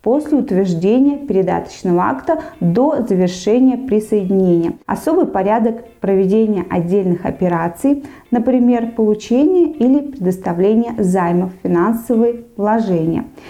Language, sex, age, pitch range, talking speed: Russian, female, 20-39, 195-255 Hz, 85 wpm